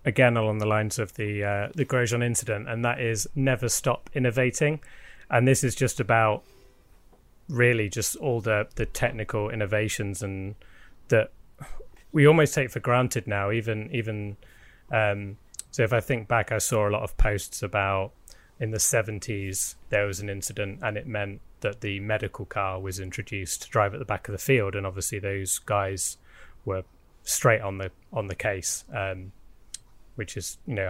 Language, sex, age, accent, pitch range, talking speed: English, male, 20-39, British, 100-120 Hz, 175 wpm